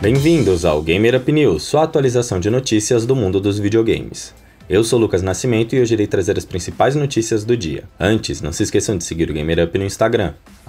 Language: Portuguese